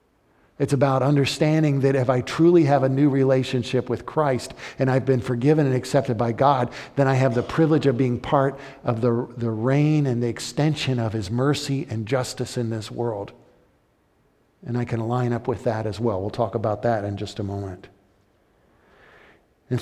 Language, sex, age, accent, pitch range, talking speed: English, male, 50-69, American, 120-170 Hz, 190 wpm